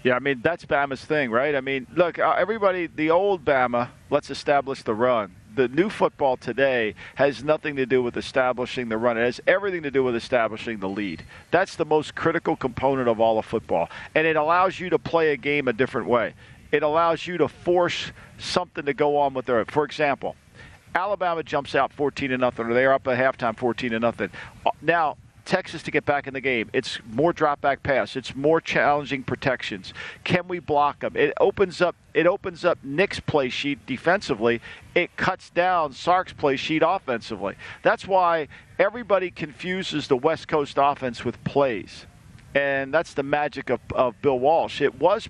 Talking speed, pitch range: 185 wpm, 125-160 Hz